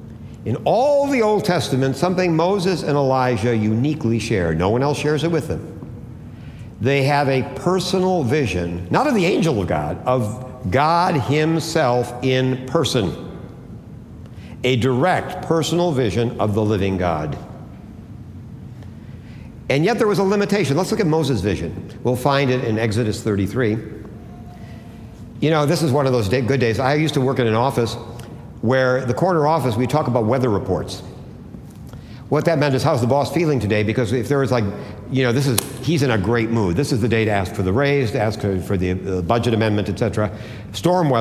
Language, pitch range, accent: English, 110-145 Hz, American